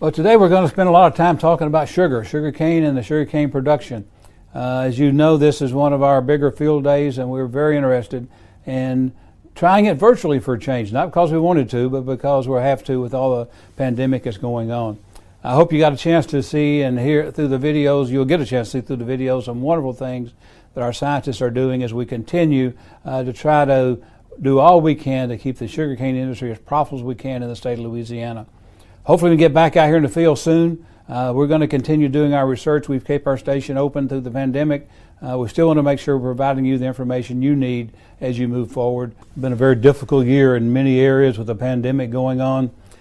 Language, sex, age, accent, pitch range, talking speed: English, male, 60-79, American, 125-145 Hz, 240 wpm